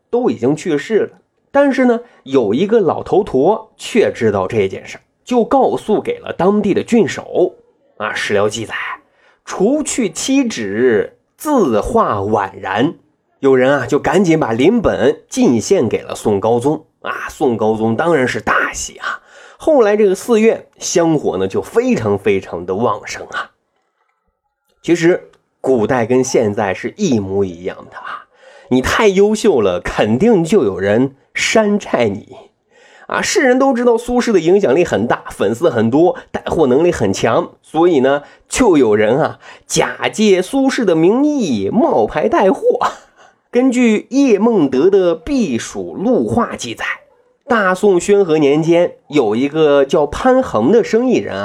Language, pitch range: Chinese, 170-270 Hz